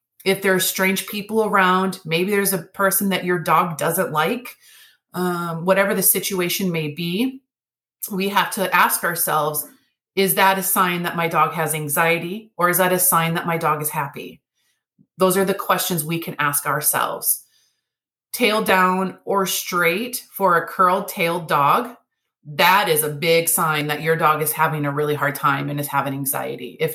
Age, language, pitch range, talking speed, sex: 30-49, English, 165-215 Hz, 180 wpm, female